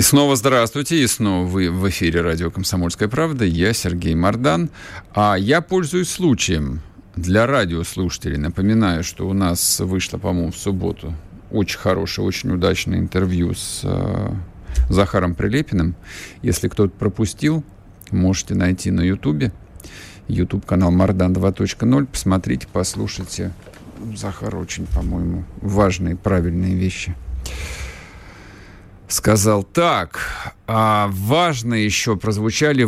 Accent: native